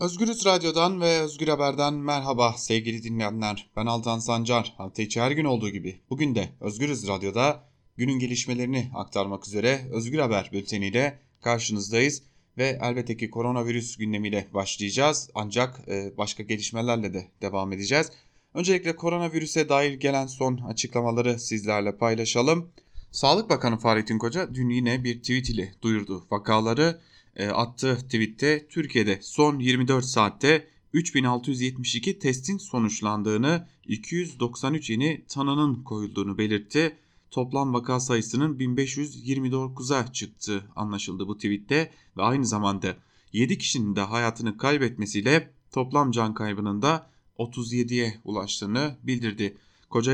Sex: male